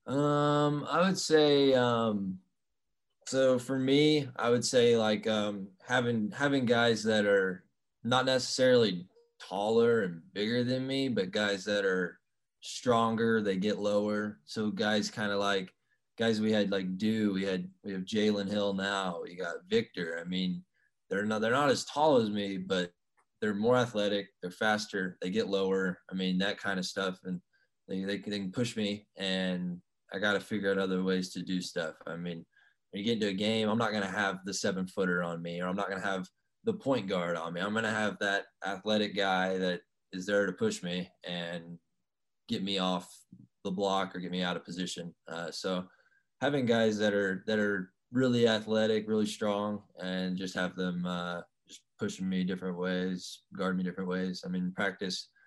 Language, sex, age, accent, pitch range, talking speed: English, male, 20-39, American, 95-110 Hz, 195 wpm